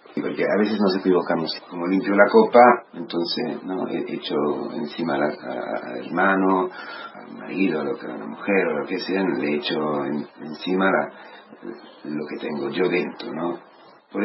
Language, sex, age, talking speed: Spanish, male, 40-59, 175 wpm